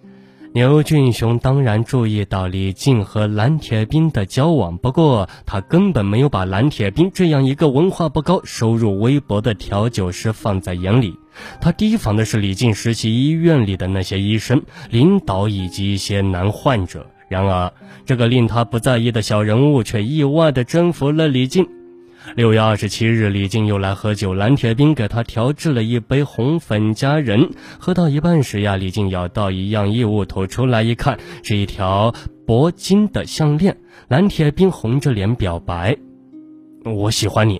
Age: 20-39